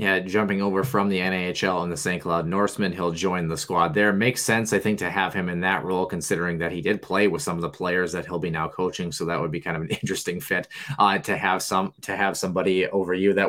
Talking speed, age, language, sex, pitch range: 265 wpm, 20-39, English, male, 85-100 Hz